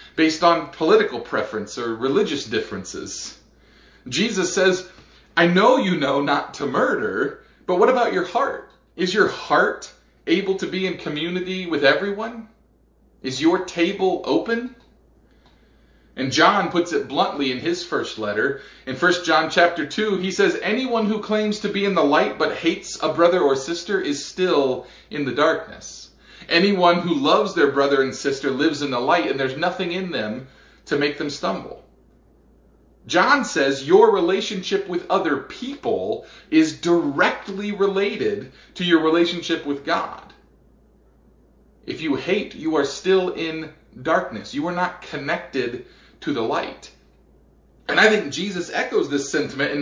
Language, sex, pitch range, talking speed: English, male, 150-200 Hz, 155 wpm